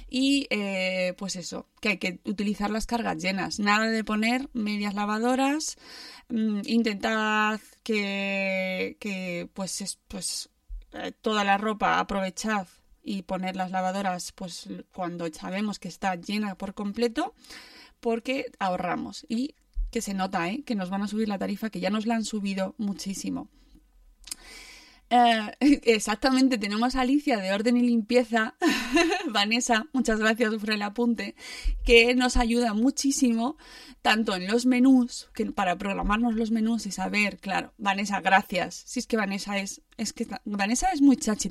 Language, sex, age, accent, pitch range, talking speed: Spanish, female, 20-39, Spanish, 200-255 Hz, 145 wpm